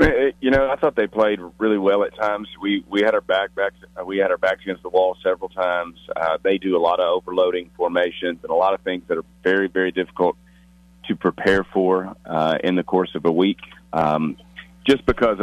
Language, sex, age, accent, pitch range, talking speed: English, male, 40-59, American, 80-100 Hz, 220 wpm